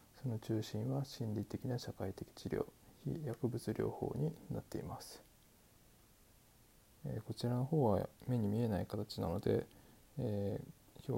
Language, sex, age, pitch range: Japanese, male, 20-39, 105-130 Hz